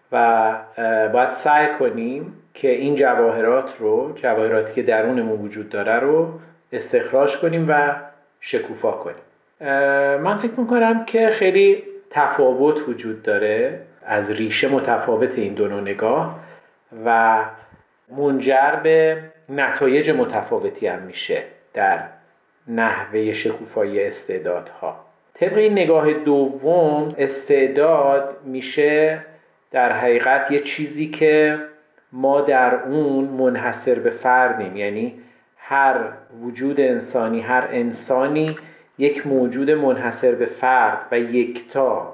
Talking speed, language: 105 wpm, Persian